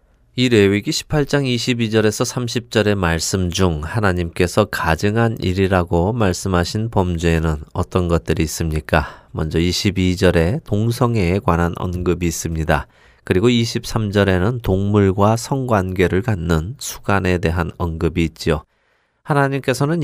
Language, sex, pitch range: Korean, male, 85-115 Hz